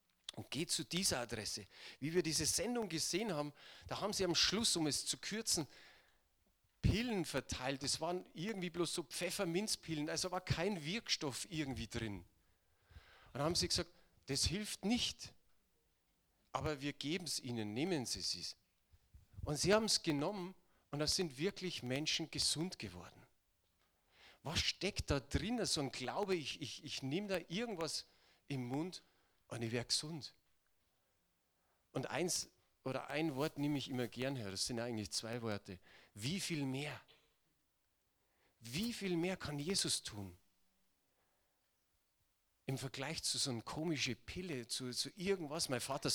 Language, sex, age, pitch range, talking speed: German, male, 40-59, 115-175 Hz, 150 wpm